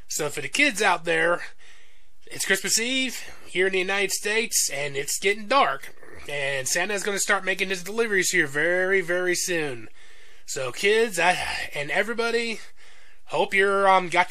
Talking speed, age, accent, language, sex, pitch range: 165 wpm, 20-39, American, English, male, 160-200 Hz